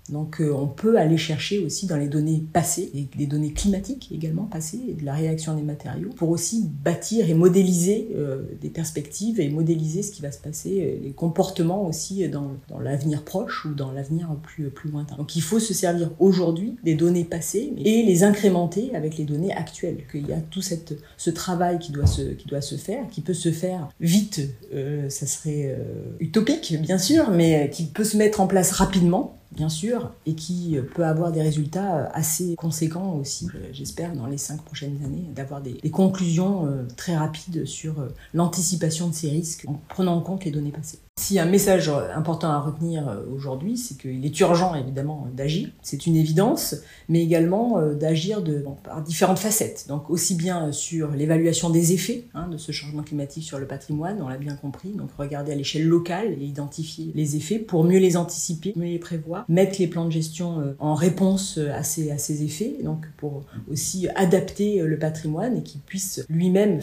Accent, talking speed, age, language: French, 195 wpm, 40-59, French